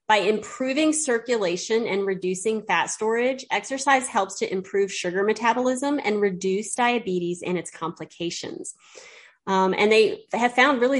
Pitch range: 180-220 Hz